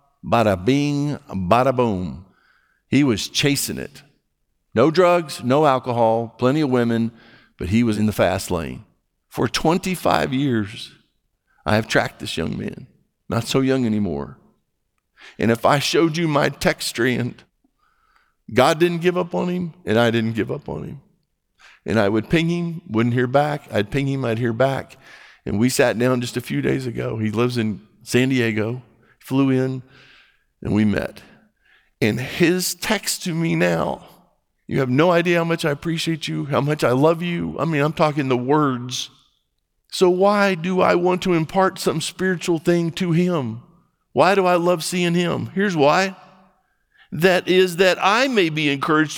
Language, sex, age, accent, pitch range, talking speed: English, male, 50-69, American, 125-180 Hz, 170 wpm